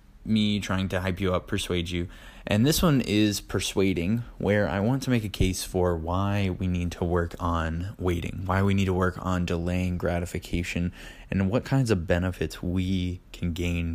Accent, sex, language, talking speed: American, male, English, 190 wpm